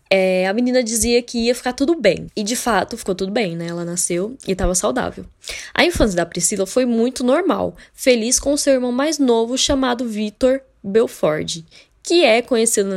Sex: female